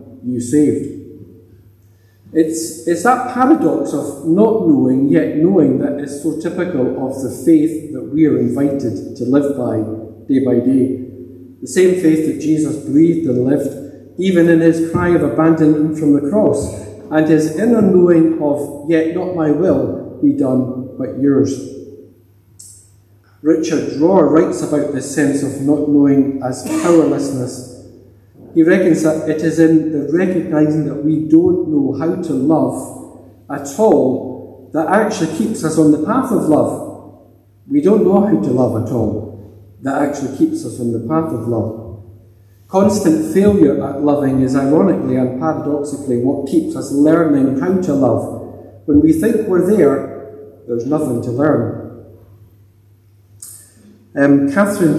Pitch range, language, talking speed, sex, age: 120-160 Hz, English, 150 wpm, male, 50-69